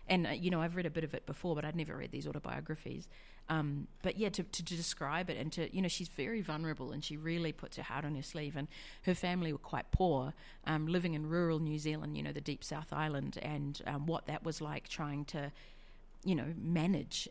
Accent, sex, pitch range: Australian, female, 145-175 Hz